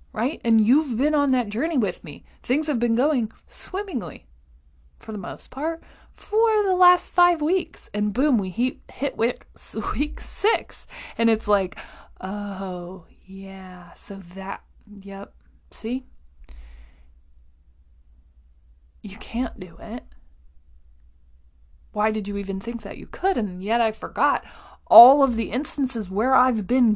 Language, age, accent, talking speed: English, 20-39, American, 135 wpm